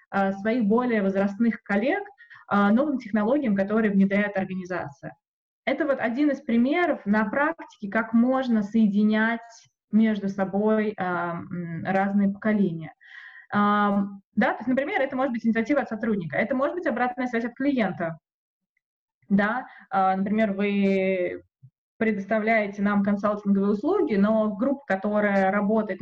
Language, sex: Russian, female